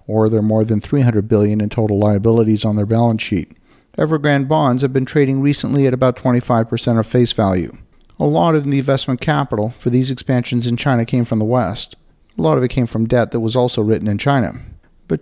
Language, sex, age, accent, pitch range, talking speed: English, male, 50-69, American, 110-135 Hz, 215 wpm